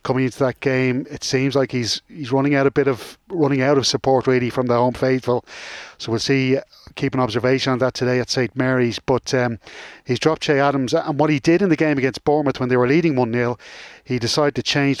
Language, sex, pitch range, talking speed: English, male, 125-145 Hz, 235 wpm